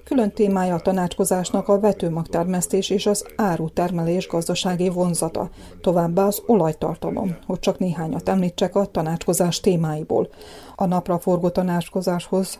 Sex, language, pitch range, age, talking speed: female, Hungarian, 175-195 Hz, 30-49, 125 wpm